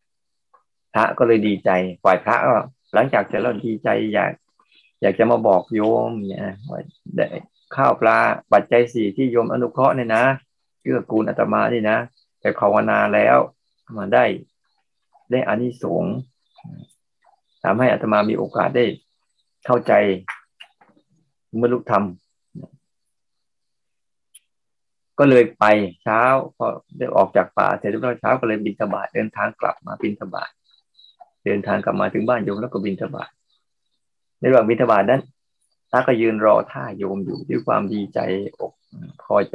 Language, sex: Thai, male